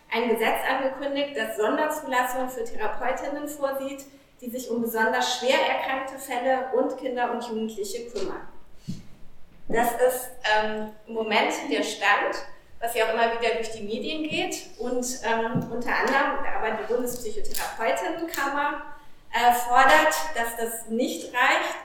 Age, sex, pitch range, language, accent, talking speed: 30-49, female, 225-275 Hz, German, German, 135 wpm